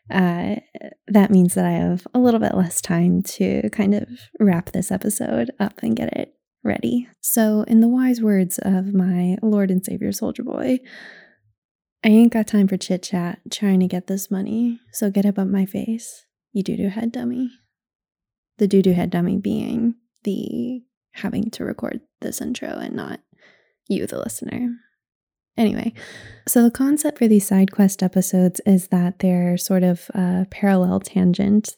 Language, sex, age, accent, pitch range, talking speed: English, female, 20-39, American, 185-225 Hz, 170 wpm